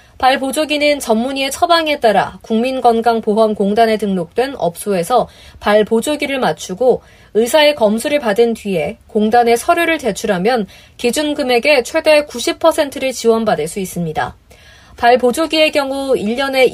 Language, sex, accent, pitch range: Korean, female, native, 205-275 Hz